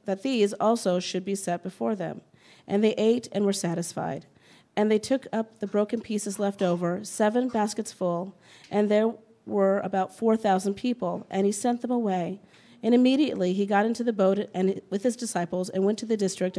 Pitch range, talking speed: 185-225 Hz, 190 wpm